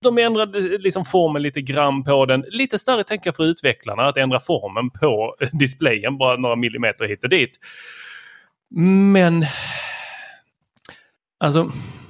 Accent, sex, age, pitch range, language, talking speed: native, male, 30-49, 130-190 Hz, Swedish, 130 wpm